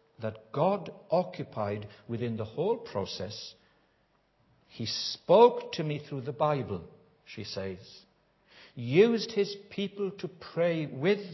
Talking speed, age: 115 wpm, 60-79